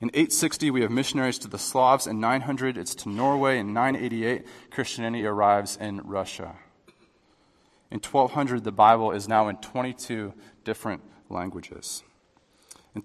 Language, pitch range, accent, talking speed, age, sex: English, 110-135 Hz, American, 165 wpm, 30-49, male